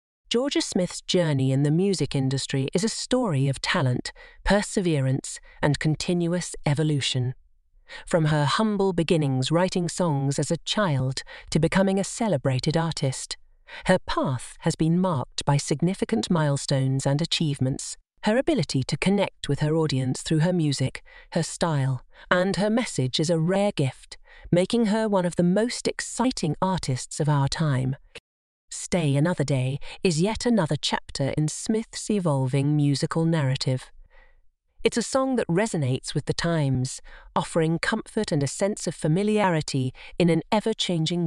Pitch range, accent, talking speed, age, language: 140-195 Hz, British, 145 wpm, 40-59, English